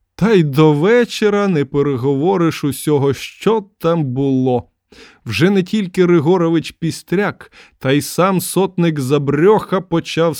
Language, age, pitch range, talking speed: Ukrainian, 20-39, 140-190 Hz, 120 wpm